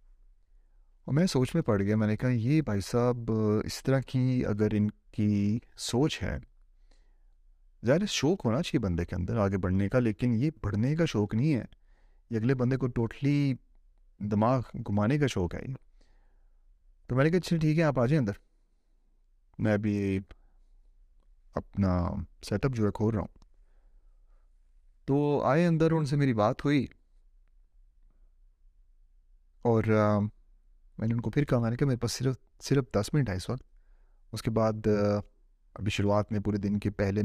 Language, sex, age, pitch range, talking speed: Urdu, male, 30-49, 90-120 Hz, 170 wpm